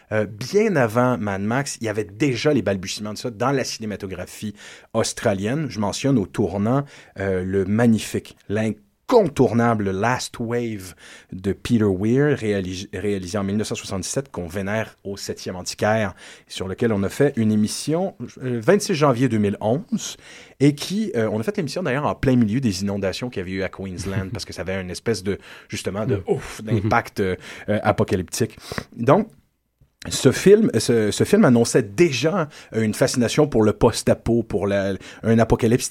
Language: French